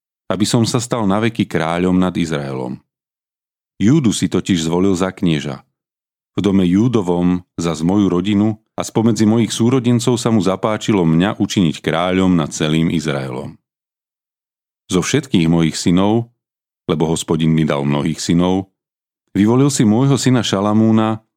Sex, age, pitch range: male, 40-59, 85-115 Hz